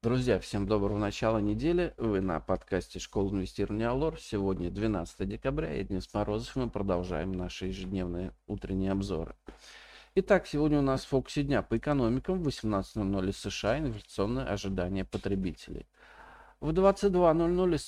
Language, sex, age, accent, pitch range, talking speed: Russian, male, 40-59, native, 95-140 Hz, 130 wpm